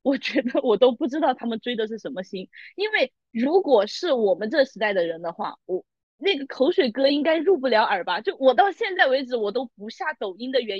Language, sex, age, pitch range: Chinese, female, 20-39, 215-285 Hz